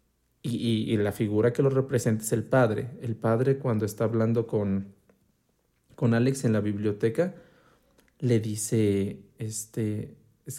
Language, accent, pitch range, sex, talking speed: Spanish, Mexican, 110-130 Hz, male, 145 wpm